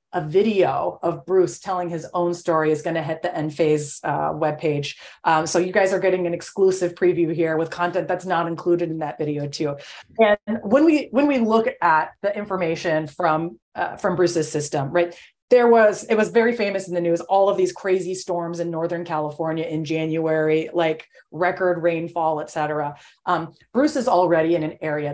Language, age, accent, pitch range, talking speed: English, 30-49, American, 155-190 Hz, 195 wpm